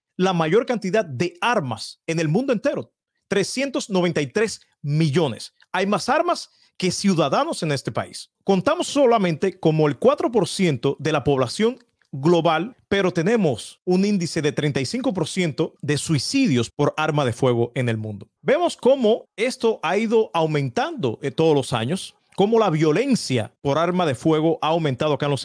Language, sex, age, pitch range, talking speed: Spanish, male, 40-59, 145-205 Hz, 155 wpm